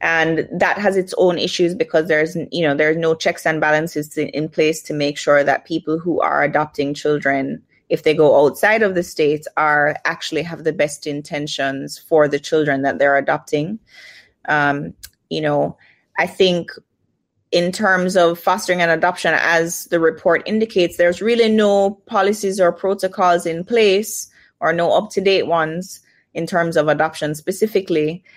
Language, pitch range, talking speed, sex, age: English, 155-185 Hz, 165 wpm, female, 20-39